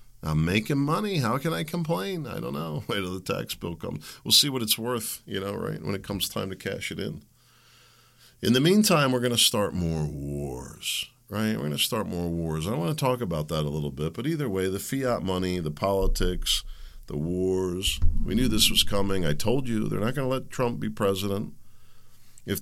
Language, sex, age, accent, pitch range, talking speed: English, male, 50-69, American, 80-120 Hz, 225 wpm